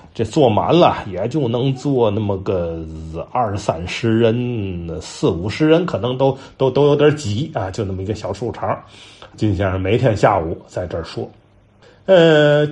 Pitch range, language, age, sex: 105-145 Hz, Chinese, 30-49, male